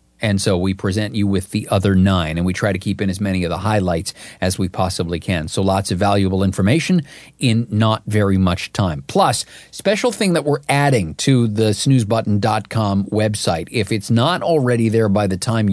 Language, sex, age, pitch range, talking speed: English, male, 40-59, 100-120 Hz, 200 wpm